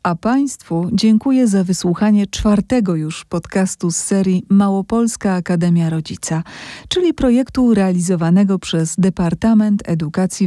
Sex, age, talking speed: female, 40-59, 110 wpm